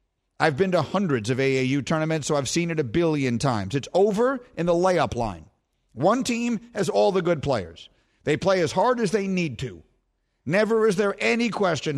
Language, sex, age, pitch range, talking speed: English, male, 50-69, 135-195 Hz, 200 wpm